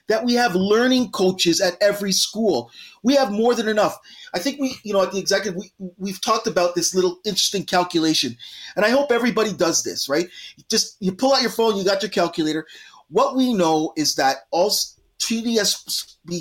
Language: English